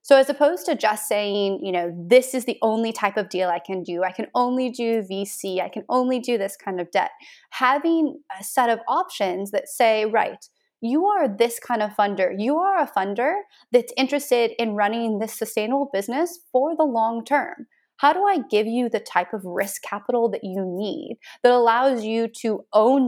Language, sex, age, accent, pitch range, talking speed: English, female, 30-49, American, 205-280 Hz, 205 wpm